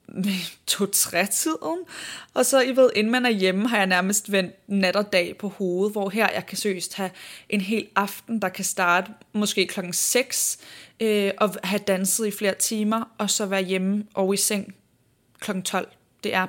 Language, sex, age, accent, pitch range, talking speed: Danish, female, 20-39, native, 180-205 Hz, 190 wpm